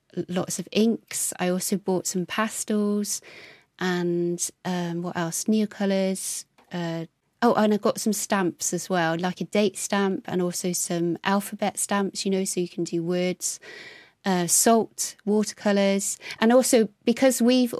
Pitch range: 180-210 Hz